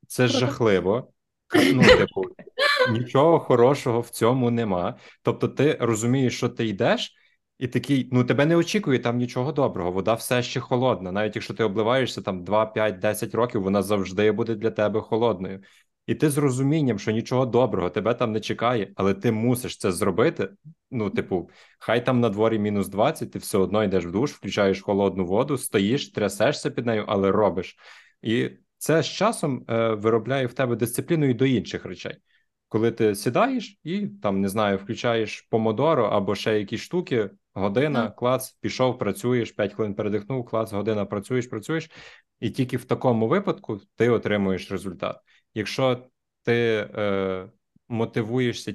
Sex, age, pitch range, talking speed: male, 20-39, 105-125 Hz, 160 wpm